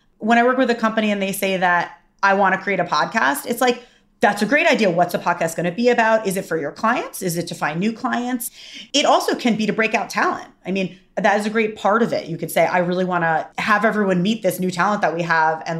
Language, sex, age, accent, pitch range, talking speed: English, female, 30-49, American, 175-230 Hz, 280 wpm